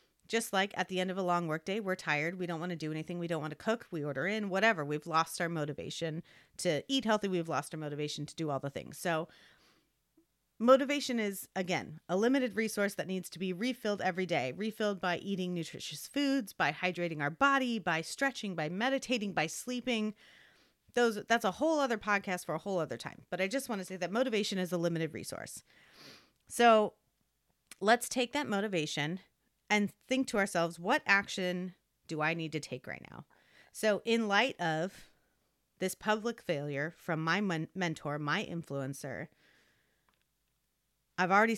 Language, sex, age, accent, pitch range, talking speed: English, female, 30-49, American, 160-210 Hz, 180 wpm